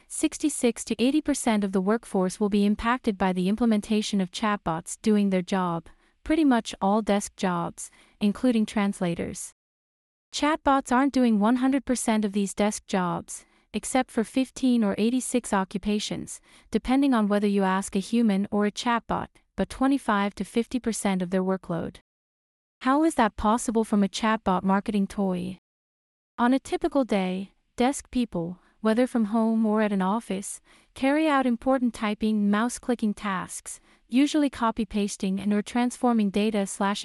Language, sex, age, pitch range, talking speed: English, female, 30-49, 200-245 Hz, 150 wpm